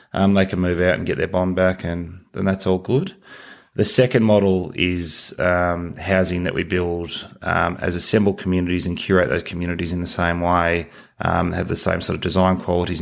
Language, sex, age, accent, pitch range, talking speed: English, male, 20-39, Australian, 85-95 Hz, 205 wpm